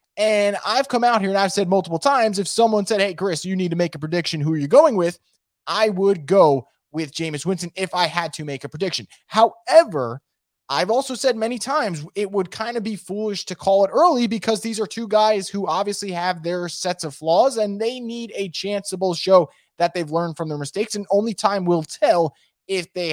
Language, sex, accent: English, male, American